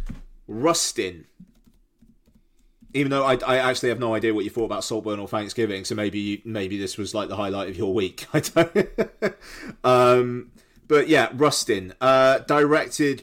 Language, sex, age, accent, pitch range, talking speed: English, male, 30-49, British, 115-140 Hz, 160 wpm